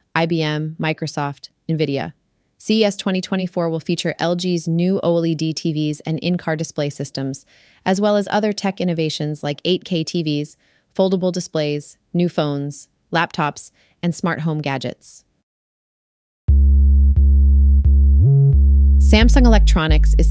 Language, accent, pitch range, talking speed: English, American, 150-185 Hz, 105 wpm